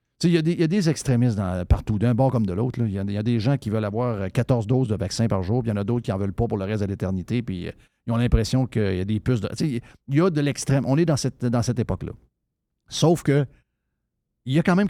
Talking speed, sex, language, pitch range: 285 wpm, male, French, 110-140 Hz